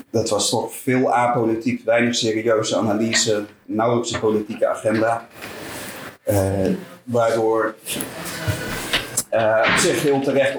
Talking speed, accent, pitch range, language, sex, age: 110 wpm, Dutch, 110-125 Hz, Dutch, male, 30-49